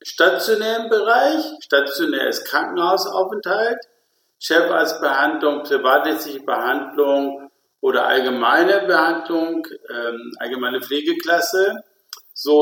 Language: German